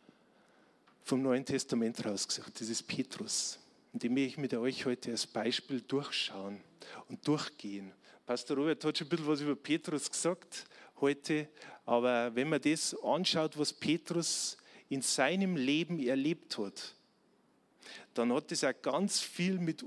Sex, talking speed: male, 150 wpm